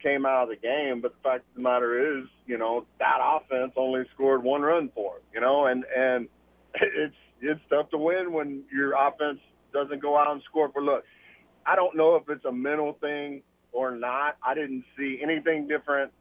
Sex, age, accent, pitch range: male, 40-59, American, 125-145 Hz